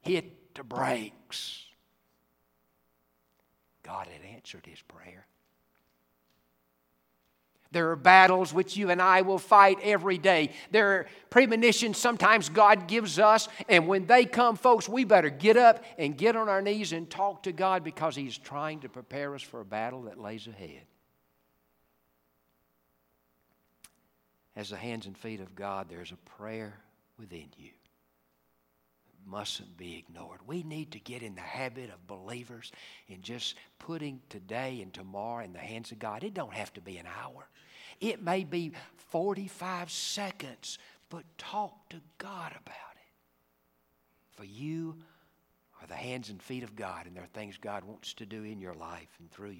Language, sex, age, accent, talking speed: English, male, 60-79, American, 160 wpm